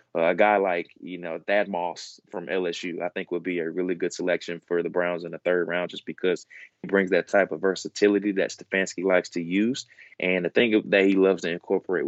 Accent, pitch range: American, 85-95 Hz